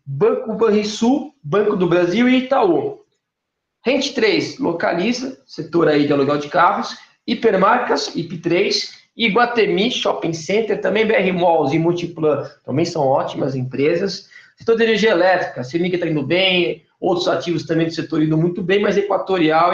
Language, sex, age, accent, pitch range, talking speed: Portuguese, male, 20-39, Brazilian, 170-225 Hz, 145 wpm